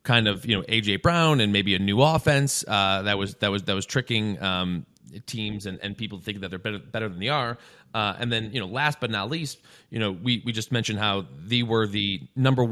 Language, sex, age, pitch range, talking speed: English, male, 20-39, 110-135 Hz, 245 wpm